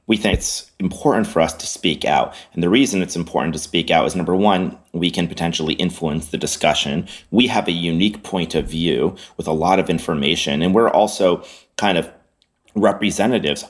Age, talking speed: 30-49, 195 wpm